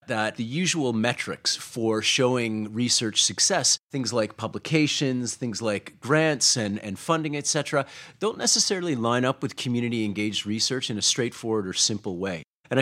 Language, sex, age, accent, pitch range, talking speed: English, male, 30-49, American, 110-140 Hz, 150 wpm